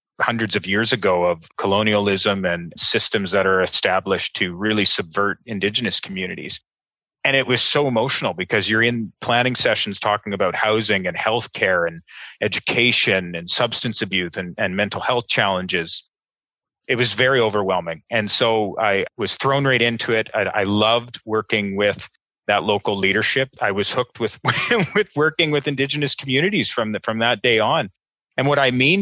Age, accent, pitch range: 30-49, American, 105-140 Hz